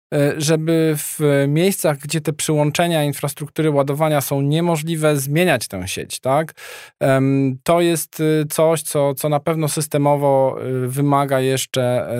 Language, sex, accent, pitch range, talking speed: Polish, male, native, 135-160 Hz, 120 wpm